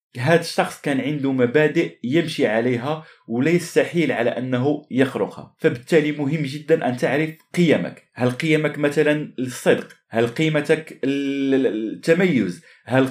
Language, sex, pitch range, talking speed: Arabic, male, 125-155 Hz, 115 wpm